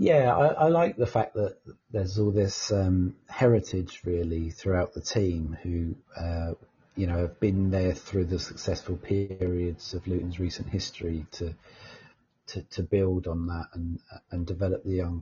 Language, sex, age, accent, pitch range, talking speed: English, male, 40-59, British, 85-100 Hz, 165 wpm